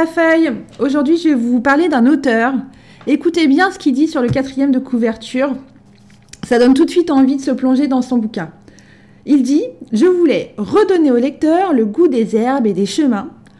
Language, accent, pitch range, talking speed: French, French, 235-310 Hz, 200 wpm